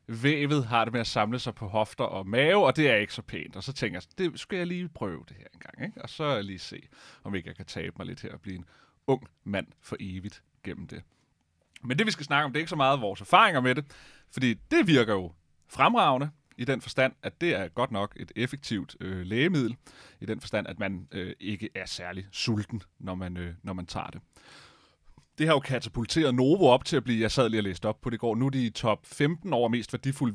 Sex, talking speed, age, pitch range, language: male, 250 wpm, 30-49, 100-135 Hz, Danish